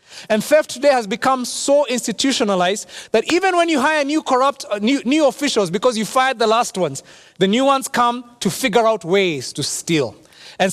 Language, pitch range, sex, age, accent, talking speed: English, 175-245 Hz, male, 30-49, South African, 190 wpm